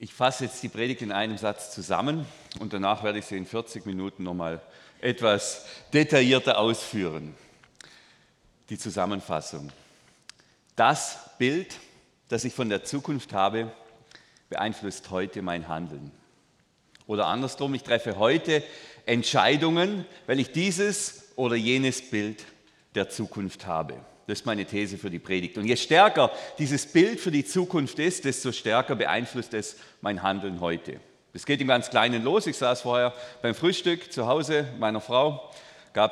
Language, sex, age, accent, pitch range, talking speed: German, male, 40-59, German, 100-135 Hz, 150 wpm